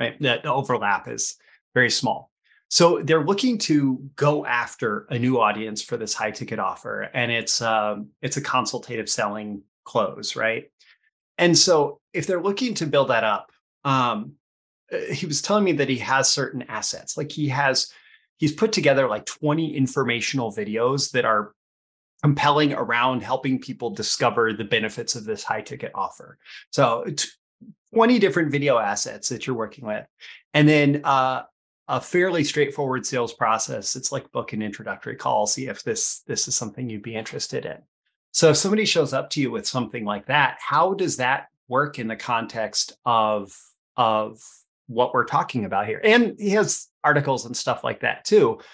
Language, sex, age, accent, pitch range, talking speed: English, male, 30-49, American, 115-160 Hz, 170 wpm